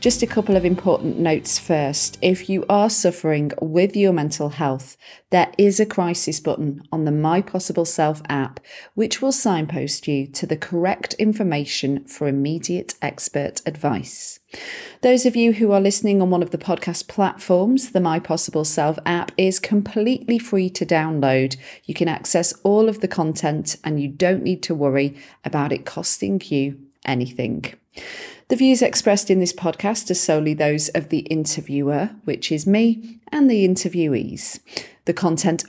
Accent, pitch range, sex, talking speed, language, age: British, 150-200 Hz, female, 165 wpm, English, 40-59